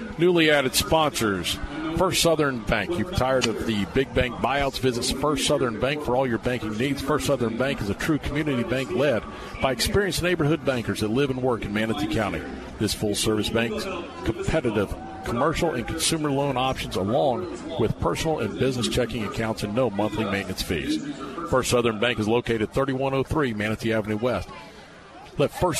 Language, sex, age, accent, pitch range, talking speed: English, male, 50-69, American, 110-140 Hz, 175 wpm